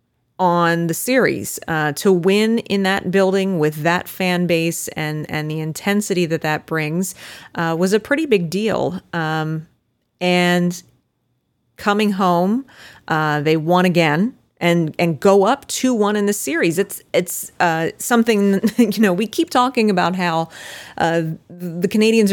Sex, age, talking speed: female, 30-49, 155 wpm